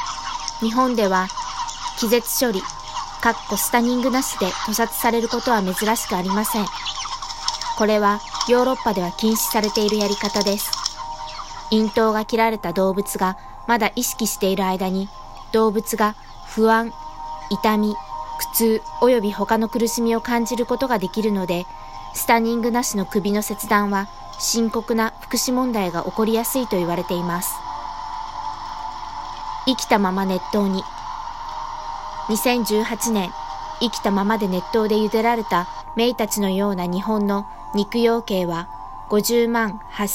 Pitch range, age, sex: 190-240 Hz, 20-39, female